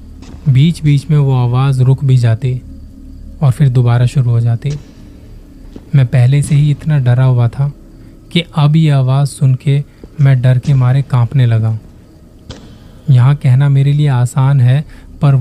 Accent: native